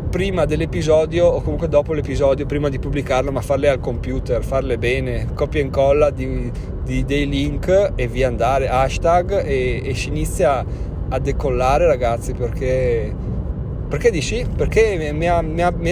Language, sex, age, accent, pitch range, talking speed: Italian, male, 30-49, native, 130-165 Hz, 160 wpm